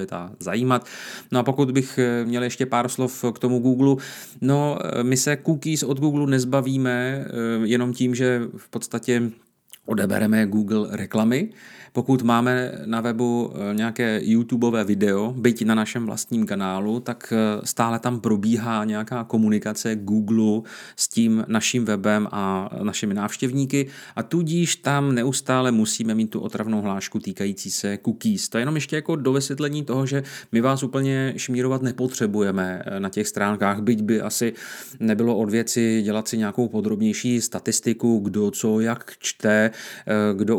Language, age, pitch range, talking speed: Czech, 30-49, 105-125 Hz, 145 wpm